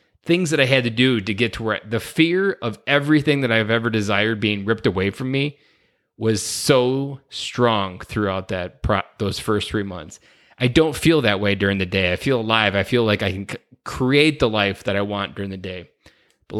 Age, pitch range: 20-39, 105-130 Hz